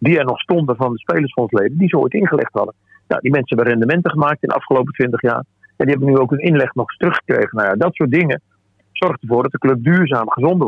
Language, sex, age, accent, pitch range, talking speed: Dutch, male, 40-59, Dutch, 110-145 Hz, 275 wpm